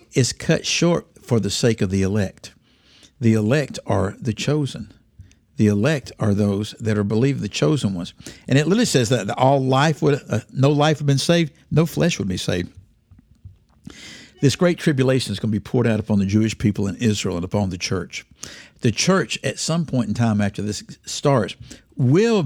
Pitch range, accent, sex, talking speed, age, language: 105-140 Hz, American, male, 195 wpm, 60-79, English